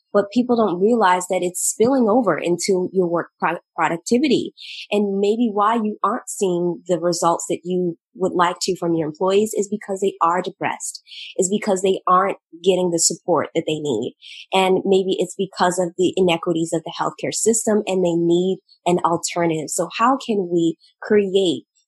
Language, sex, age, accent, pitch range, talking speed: English, female, 20-39, American, 175-210 Hz, 180 wpm